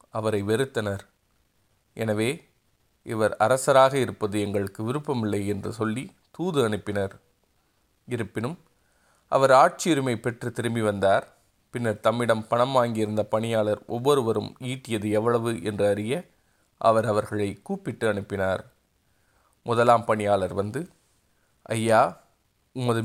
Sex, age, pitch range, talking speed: male, 30-49, 105-120 Hz, 95 wpm